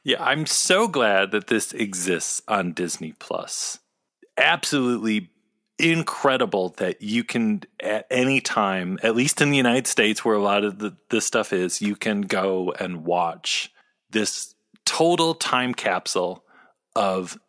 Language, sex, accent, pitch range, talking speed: English, male, American, 105-165 Hz, 145 wpm